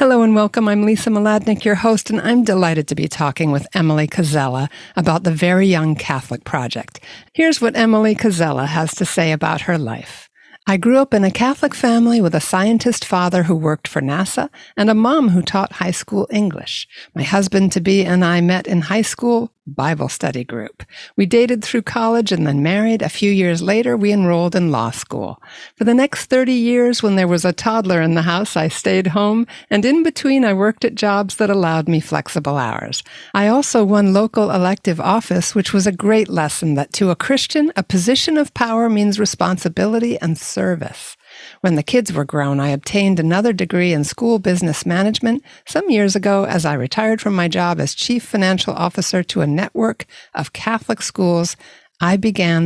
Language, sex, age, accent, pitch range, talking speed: English, female, 60-79, American, 165-225 Hz, 190 wpm